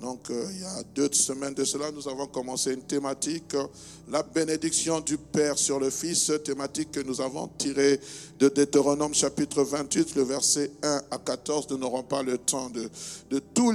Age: 60-79